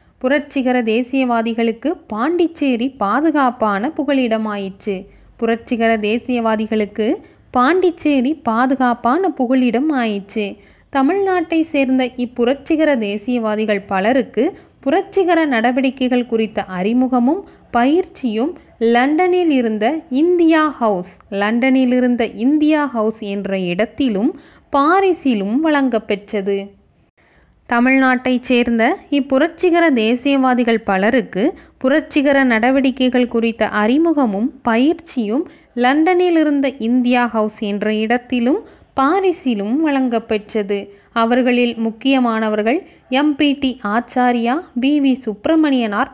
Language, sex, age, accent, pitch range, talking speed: Tamil, female, 20-39, native, 225-290 Hz, 75 wpm